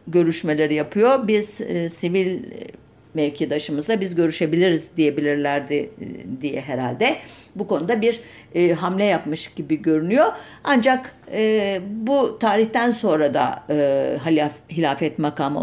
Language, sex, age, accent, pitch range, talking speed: German, female, 50-69, Turkish, 155-205 Hz, 90 wpm